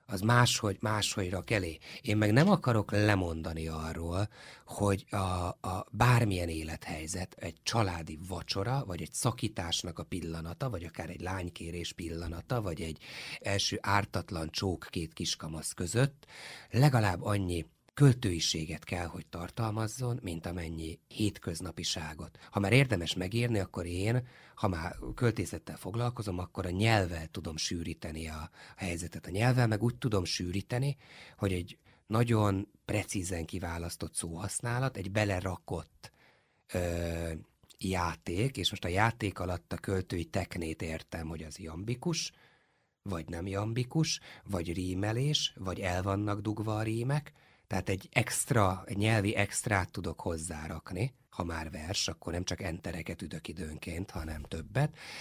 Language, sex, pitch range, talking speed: Hungarian, male, 85-110 Hz, 130 wpm